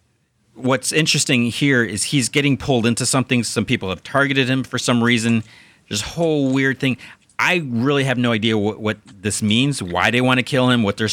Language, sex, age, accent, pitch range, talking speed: English, male, 40-59, American, 100-125 Hz, 205 wpm